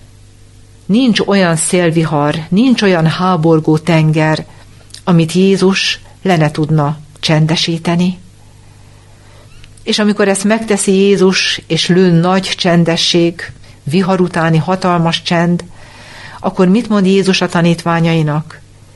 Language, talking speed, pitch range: Hungarian, 100 wpm, 145-185 Hz